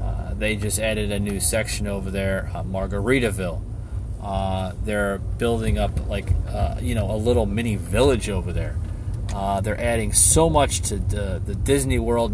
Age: 30-49